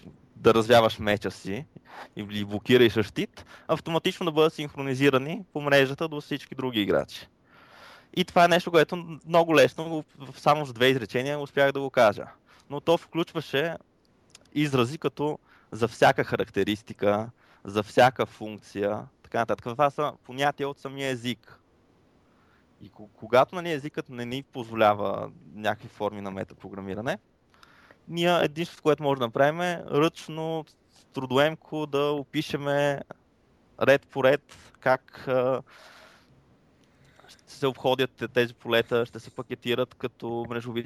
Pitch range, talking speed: 110-150 Hz, 130 wpm